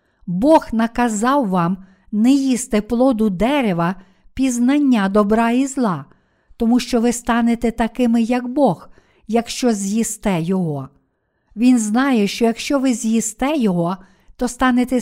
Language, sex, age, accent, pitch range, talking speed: Ukrainian, female, 50-69, native, 210-255 Hz, 120 wpm